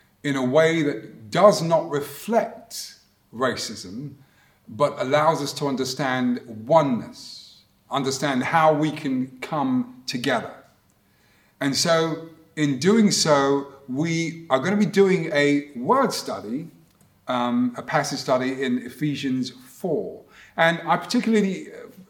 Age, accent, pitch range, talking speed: 40-59, British, 135-180 Hz, 120 wpm